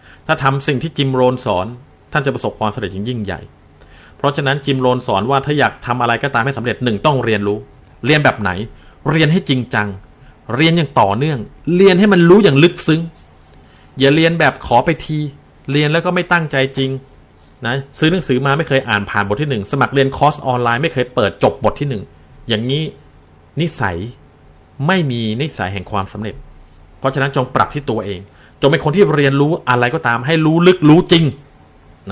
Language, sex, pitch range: Thai, male, 110-160 Hz